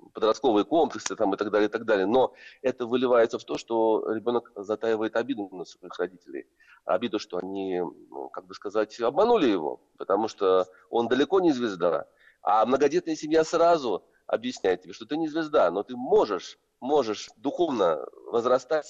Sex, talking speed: male, 155 wpm